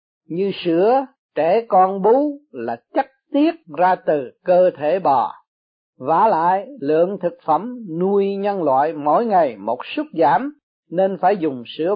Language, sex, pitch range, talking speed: Vietnamese, male, 160-225 Hz, 150 wpm